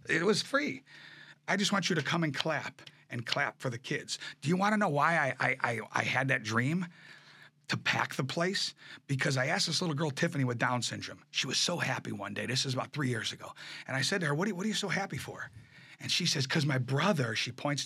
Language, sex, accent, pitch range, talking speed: English, male, American, 130-170 Hz, 260 wpm